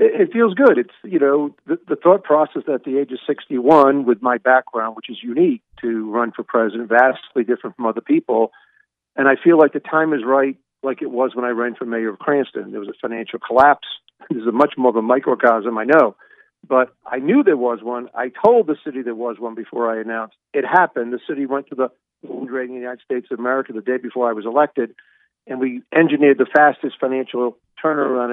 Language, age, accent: English, 50-69, American